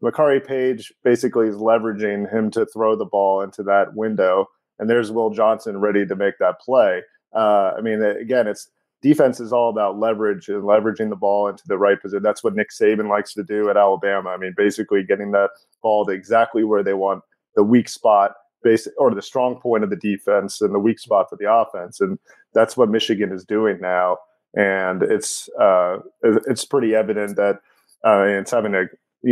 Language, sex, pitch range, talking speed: English, male, 105-115 Hz, 200 wpm